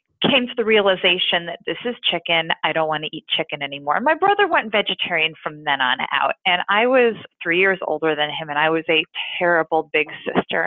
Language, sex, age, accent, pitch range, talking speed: English, female, 30-49, American, 170-220 Hz, 215 wpm